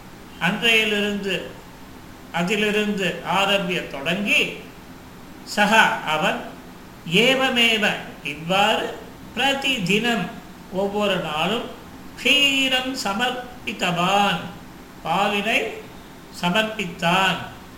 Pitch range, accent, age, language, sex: 185-235 Hz, native, 50-69, Tamil, male